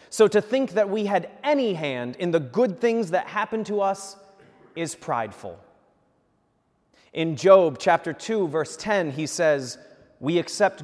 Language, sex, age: English, male, 30-49